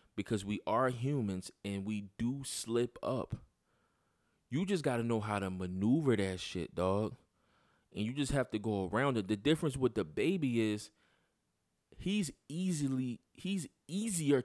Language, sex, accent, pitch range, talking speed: English, male, American, 105-145 Hz, 155 wpm